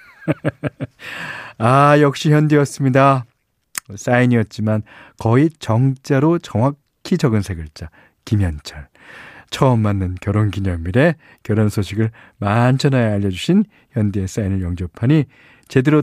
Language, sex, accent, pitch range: Korean, male, native, 100-150 Hz